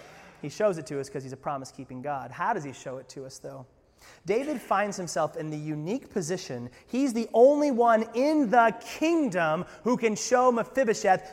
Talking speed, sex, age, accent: 190 wpm, male, 30-49, American